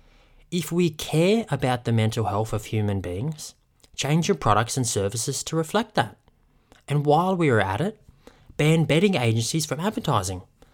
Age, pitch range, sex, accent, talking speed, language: 20-39, 115-145 Hz, male, Australian, 160 wpm, English